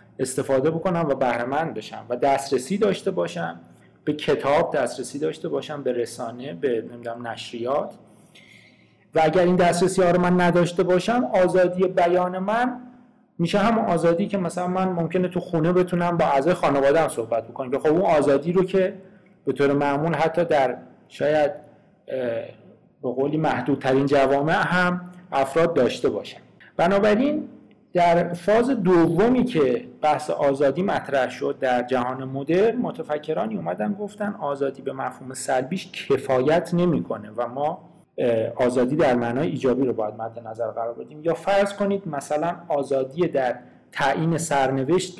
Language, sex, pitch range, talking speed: Persian, male, 135-185 Hz, 135 wpm